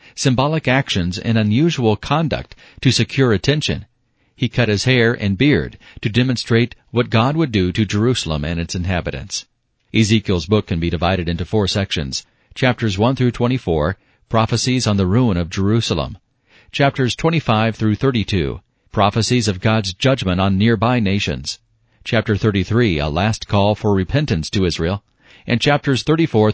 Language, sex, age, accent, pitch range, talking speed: English, male, 40-59, American, 95-120 Hz, 145 wpm